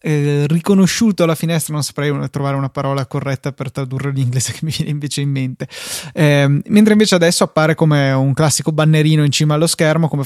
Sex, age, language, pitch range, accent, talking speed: male, 20-39, Italian, 140-160 Hz, native, 195 wpm